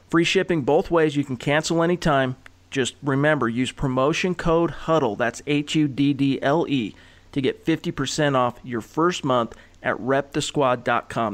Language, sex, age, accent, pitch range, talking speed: English, male, 40-59, American, 125-155 Hz, 140 wpm